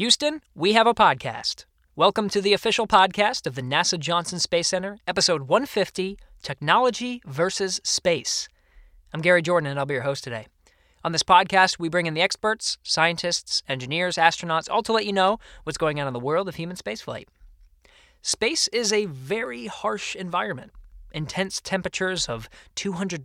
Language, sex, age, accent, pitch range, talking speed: English, male, 20-39, American, 140-195 Hz, 170 wpm